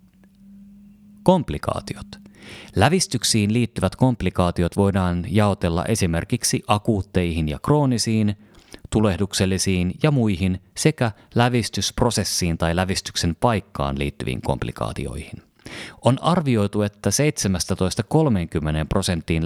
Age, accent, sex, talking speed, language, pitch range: 30-49, native, male, 75 wpm, Finnish, 85-120 Hz